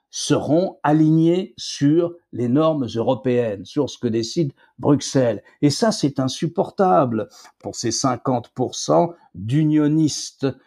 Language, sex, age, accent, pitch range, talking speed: French, male, 60-79, French, 125-185 Hz, 105 wpm